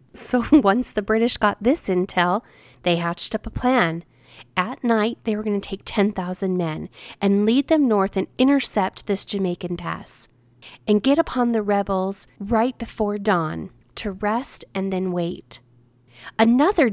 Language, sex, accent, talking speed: English, female, American, 155 wpm